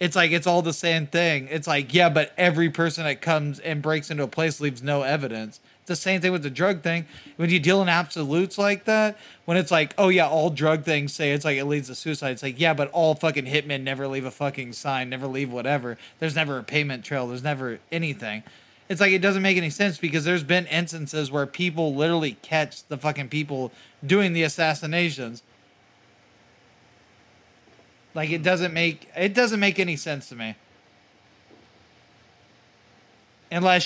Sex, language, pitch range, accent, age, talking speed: male, English, 140-175 Hz, American, 20-39, 195 wpm